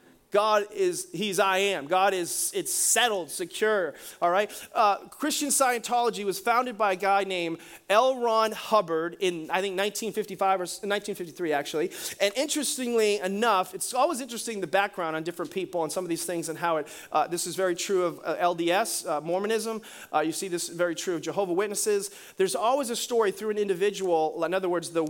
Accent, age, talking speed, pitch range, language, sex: American, 30-49, 190 wpm, 175-225 Hz, English, male